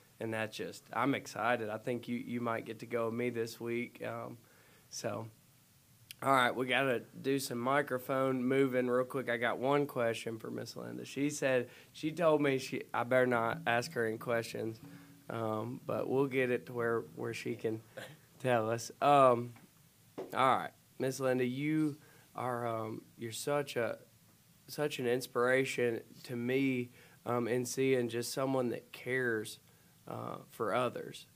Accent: American